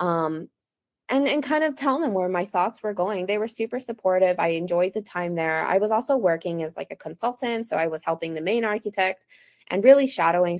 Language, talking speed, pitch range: English, 220 wpm, 165-225 Hz